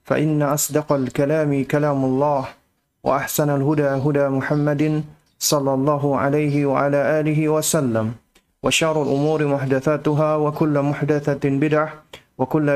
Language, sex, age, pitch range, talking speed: Indonesian, male, 30-49, 125-145 Hz, 110 wpm